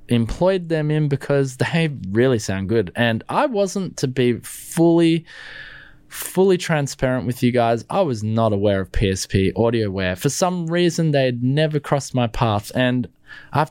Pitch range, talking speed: 115-150 Hz, 160 wpm